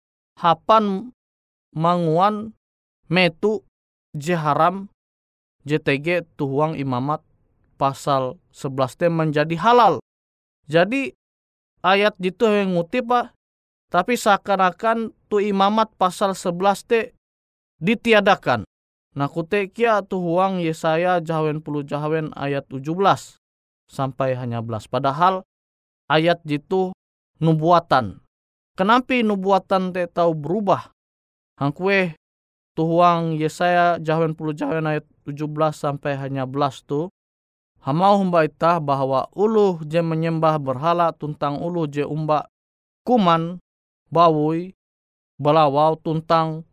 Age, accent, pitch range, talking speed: 20-39, native, 140-185 Hz, 95 wpm